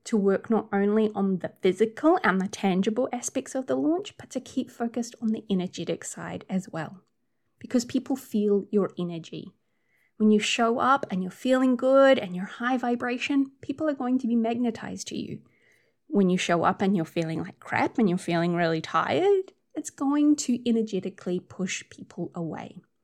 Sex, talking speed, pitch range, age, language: female, 180 wpm, 195-265 Hz, 20-39, English